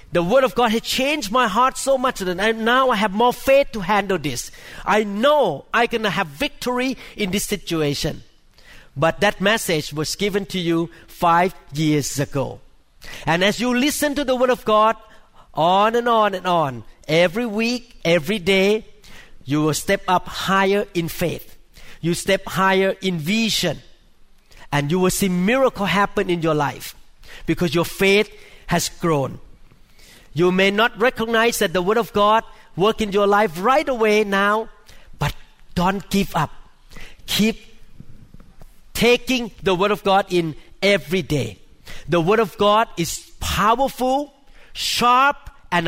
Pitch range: 170-220 Hz